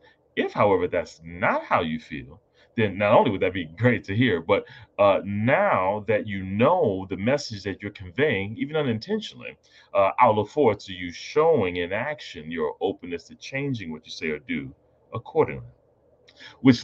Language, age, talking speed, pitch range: English, 30-49, 175 wpm, 95-135 Hz